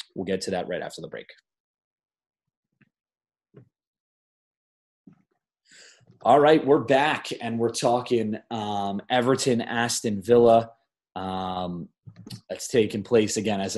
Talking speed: 110 wpm